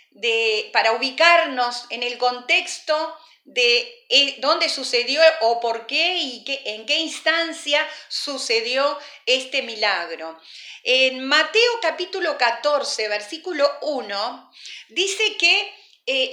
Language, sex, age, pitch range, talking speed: Spanish, female, 40-59, 225-335 Hz, 105 wpm